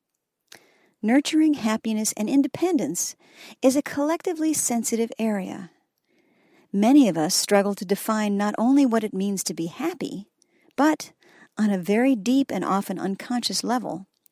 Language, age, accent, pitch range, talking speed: English, 50-69, American, 195-265 Hz, 135 wpm